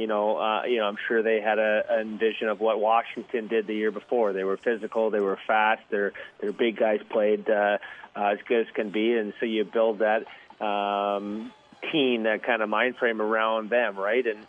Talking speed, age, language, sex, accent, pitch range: 215 wpm, 30-49, English, male, American, 105-115 Hz